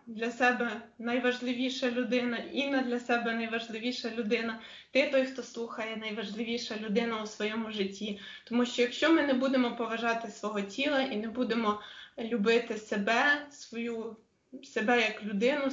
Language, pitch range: Ukrainian, 220-250 Hz